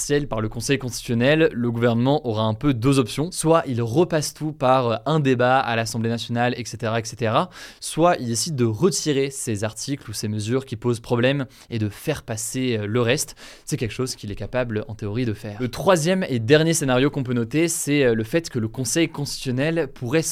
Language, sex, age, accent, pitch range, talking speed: French, male, 20-39, French, 115-150 Hz, 200 wpm